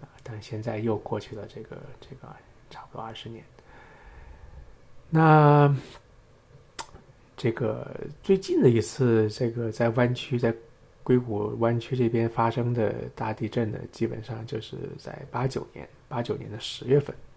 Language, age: Chinese, 20-39